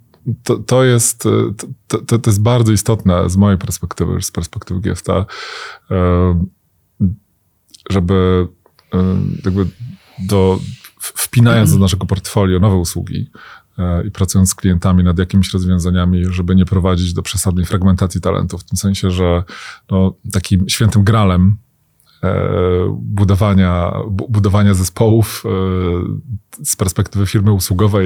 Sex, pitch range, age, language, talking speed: male, 95-110 Hz, 20-39, Polish, 120 wpm